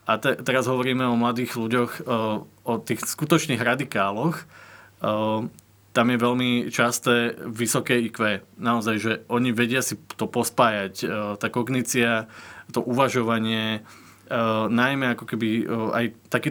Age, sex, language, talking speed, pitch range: 20-39, male, Slovak, 140 wpm, 110-120 Hz